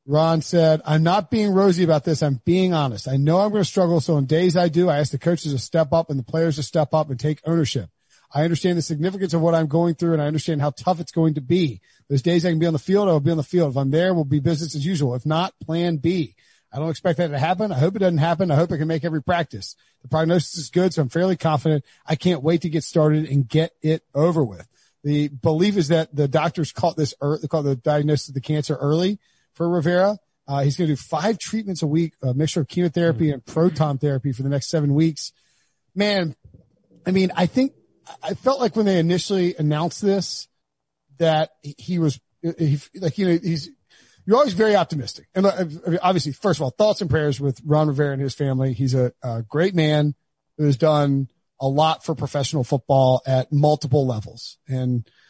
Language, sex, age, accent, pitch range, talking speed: English, male, 40-59, American, 145-175 Hz, 230 wpm